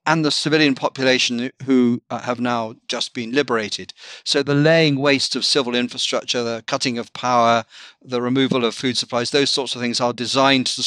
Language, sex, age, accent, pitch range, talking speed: English, male, 50-69, British, 120-145 Hz, 180 wpm